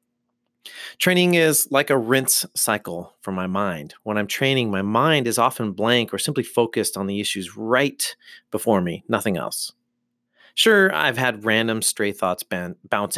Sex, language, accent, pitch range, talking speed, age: male, English, American, 100-135 Hz, 160 wpm, 30-49